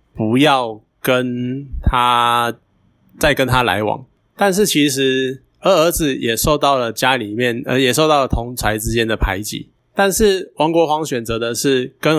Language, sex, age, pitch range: Chinese, male, 20-39, 120-155 Hz